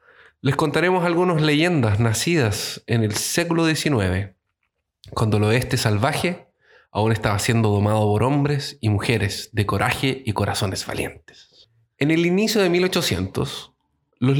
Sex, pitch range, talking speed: male, 105-150 Hz, 135 wpm